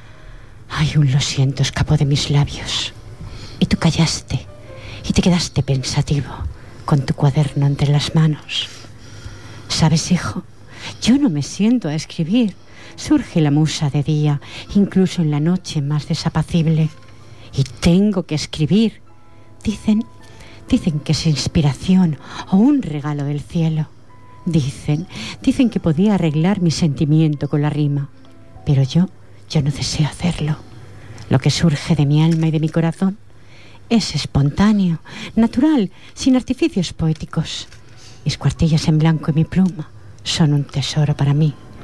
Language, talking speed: Spanish, 140 wpm